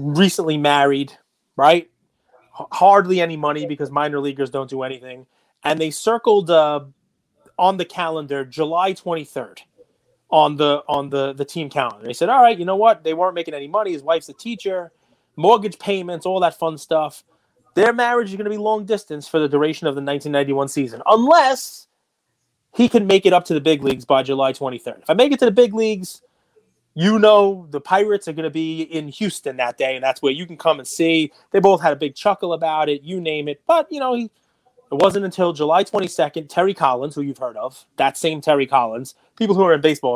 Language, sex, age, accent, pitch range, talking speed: English, male, 30-49, American, 145-200 Hz, 210 wpm